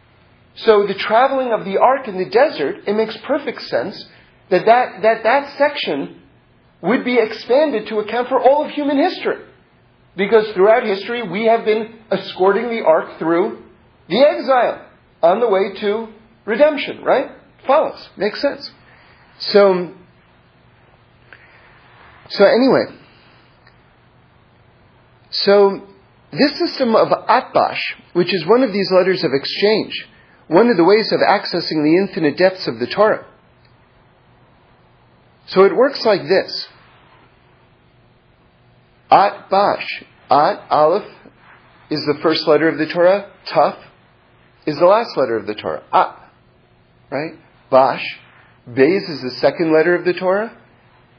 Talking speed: 130 wpm